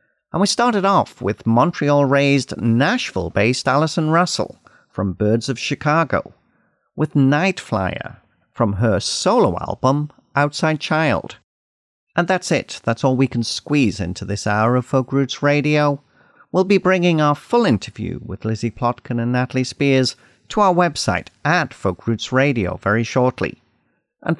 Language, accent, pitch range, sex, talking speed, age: English, British, 110-150 Hz, male, 145 wpm, 50-69